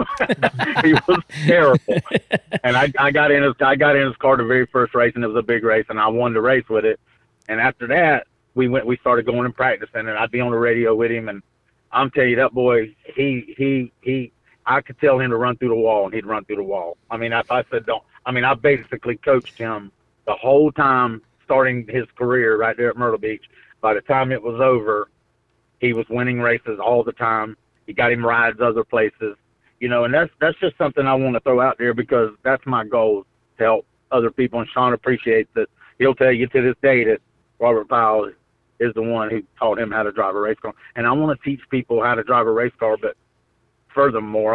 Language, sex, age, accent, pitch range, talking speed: English, male, 50-69, American, 115-130 Hz, 235 wpm